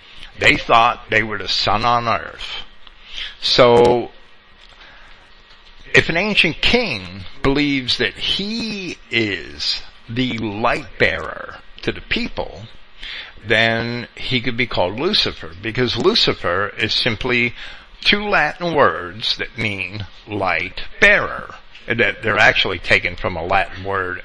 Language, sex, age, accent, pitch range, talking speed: English, male, 60-79, American, 100-130 Hz, 120 wpm